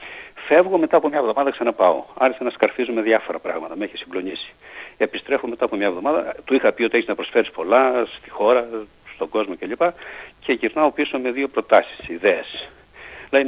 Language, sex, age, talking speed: Greek, male, 50-69, 180 wpm